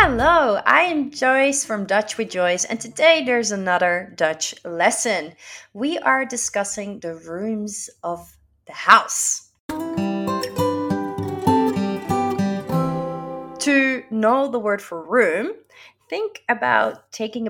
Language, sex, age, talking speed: Dutch, female, 20-39, 105 wpm